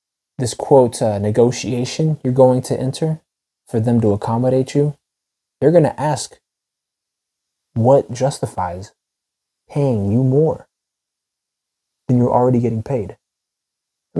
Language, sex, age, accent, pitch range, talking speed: English, male, 20-39, American, 105-130 Hz, 120 wpm